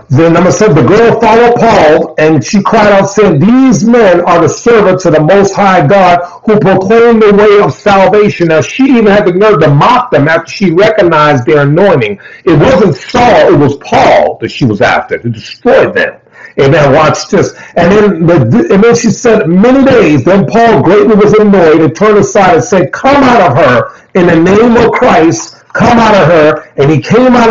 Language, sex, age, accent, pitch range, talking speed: English, male, 50-69, American, 165-220 Hz, 205 wpm